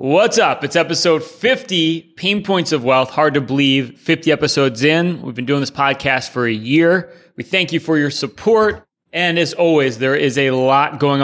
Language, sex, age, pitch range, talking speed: English, male, 30-49, 130-160 Hz, 200 wpm